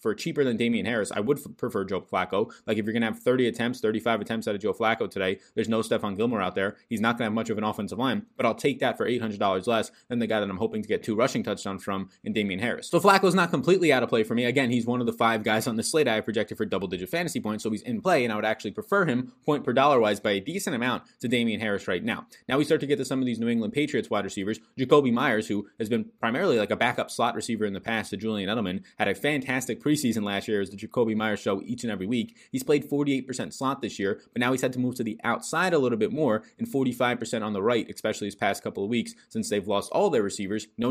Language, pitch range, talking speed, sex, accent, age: English, 105-130 Hz, 285 wpm, male, American, 20-39